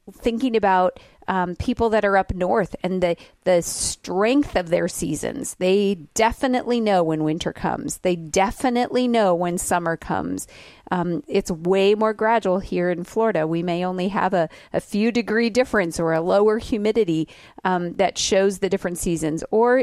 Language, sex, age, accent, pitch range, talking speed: English, female, 40-59, American, 170-210 Hz, 165 wpm